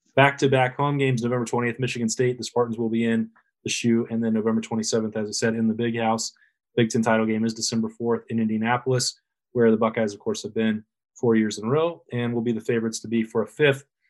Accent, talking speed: American, 240 wpm